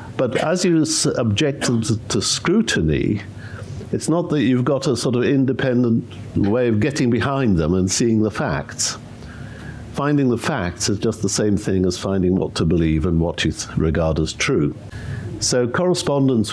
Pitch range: 100-130 Hz